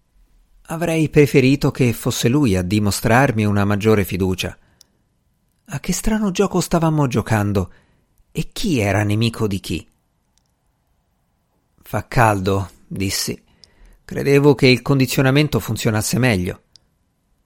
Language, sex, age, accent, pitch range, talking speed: Italian, male, 50-69, native, 100-140 Hz, 105 wpm